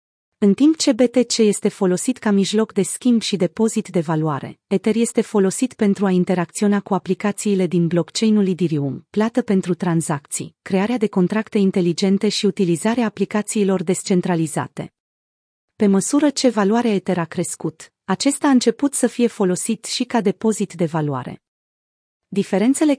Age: 30-49